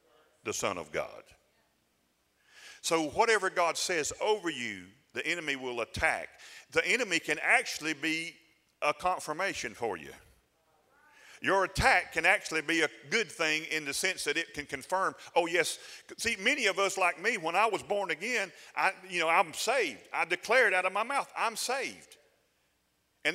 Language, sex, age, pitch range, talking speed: English, male, 40-59, 190-235 Hz, 165 wpm